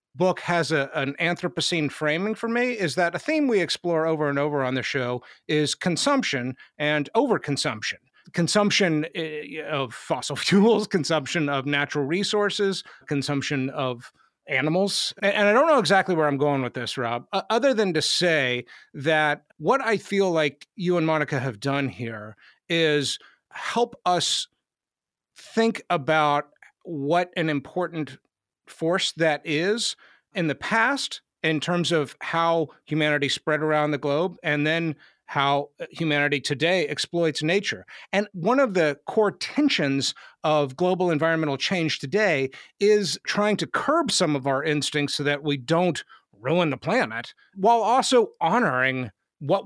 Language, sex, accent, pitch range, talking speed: English, male, American, 145-195 Hz, 145 wpm